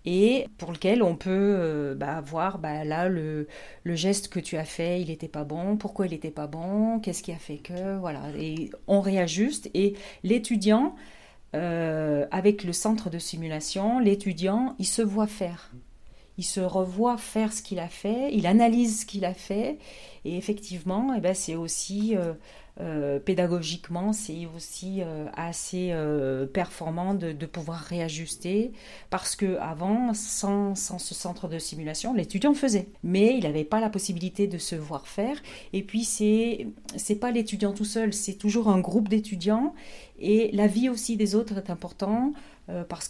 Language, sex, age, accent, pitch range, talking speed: French, female, 40-59, French, 165-210 Hz, 175 wpm